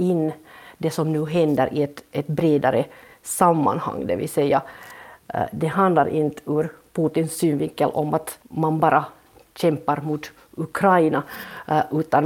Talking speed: 130 wpm